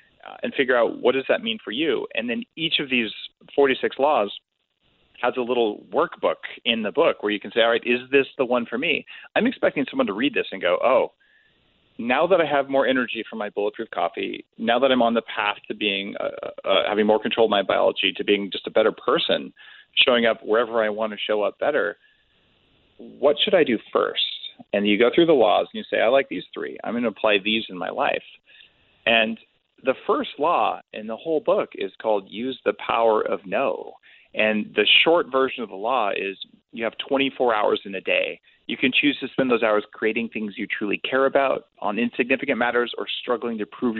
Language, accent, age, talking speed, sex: English, American, 40-59, 220 wpm, male